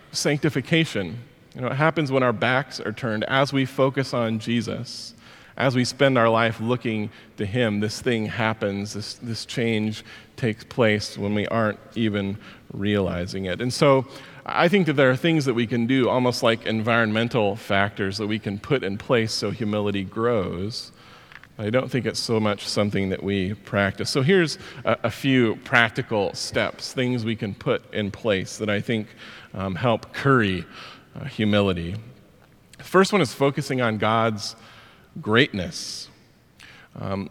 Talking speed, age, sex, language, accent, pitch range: 165 wpm, 40-59, male, English, American, 105-130 Hz